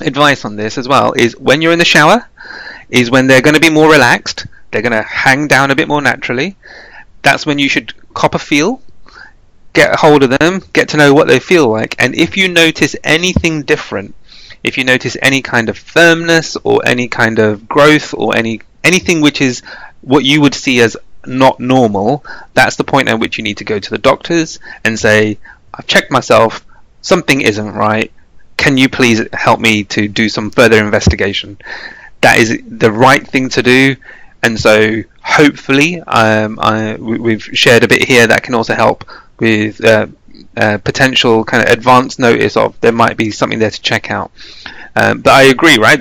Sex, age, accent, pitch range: male, 30-49, British, 110-150 Hz